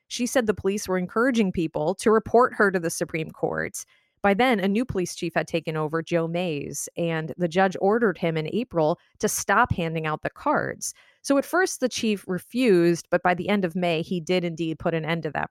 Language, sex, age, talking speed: English, female, 30-49, 225 wpm